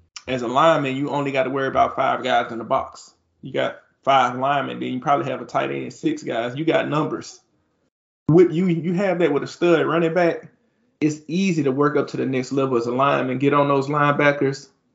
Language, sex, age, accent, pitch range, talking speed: English, male, 20-39, American, 130-160 Hz, 220 wpm